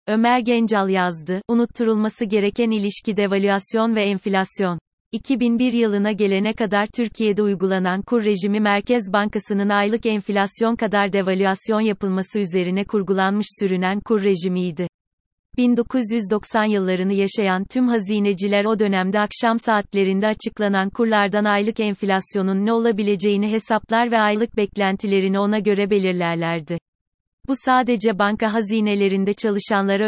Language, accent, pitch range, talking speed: Turkish, native, 195-220 Hz, 110 wpm